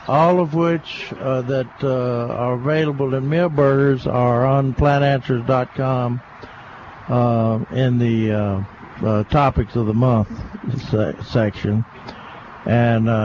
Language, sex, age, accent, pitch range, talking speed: English, male, 60-79, American, 120-155 Hz, 115 wpm